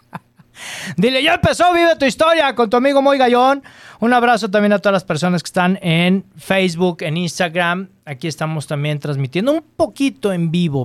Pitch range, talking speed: 165-215 Hz, 175 wpm